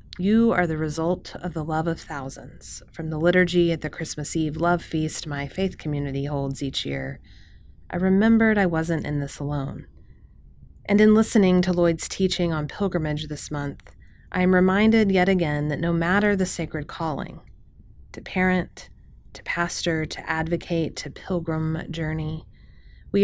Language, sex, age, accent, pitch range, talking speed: English, female, 30-49, American, 145-180 Hz, 155 wpm